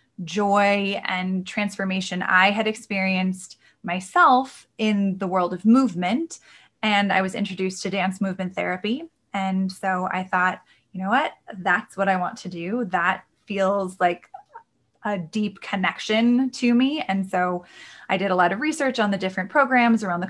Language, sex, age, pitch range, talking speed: English, female, 20-39, 190-235 Hz, 165 wpm